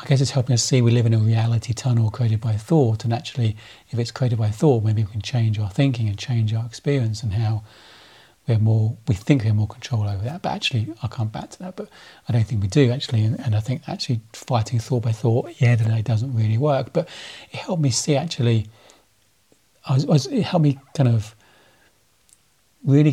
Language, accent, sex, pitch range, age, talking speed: English, British, male, 110-140 Hz, 40-59, 230 wpm